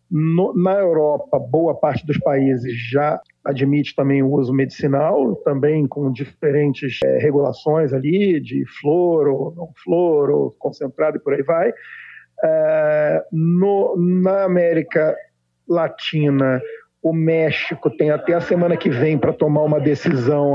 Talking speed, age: 130 wpm, 50-69